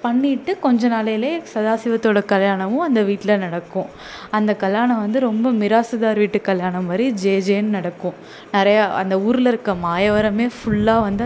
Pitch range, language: 190-230 Hz, Tamil